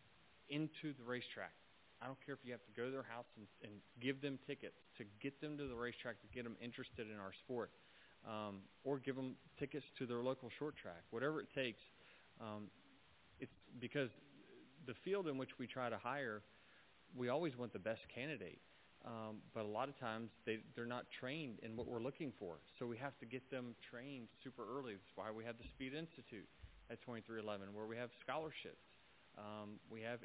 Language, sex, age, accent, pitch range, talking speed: English, male, 30-49, American, 105-125 Hz, 200 wpm